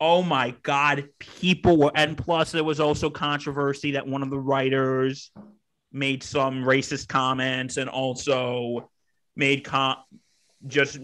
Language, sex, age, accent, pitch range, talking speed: English, male, 30-49, American, 130-150 Hz, 135 wpm